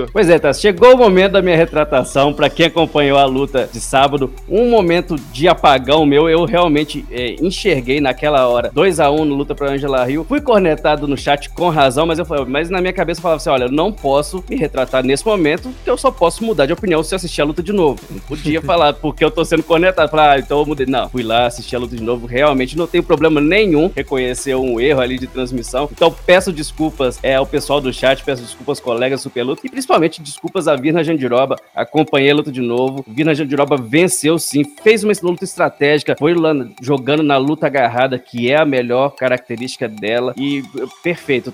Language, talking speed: Portuguese, 215 wpm